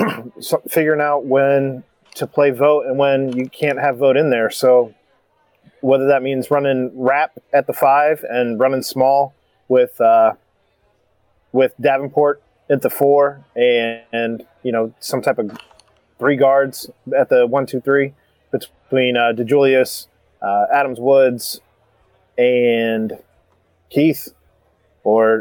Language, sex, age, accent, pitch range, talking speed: English, male, 20-39, American, 110-135 Hz, 130 wpm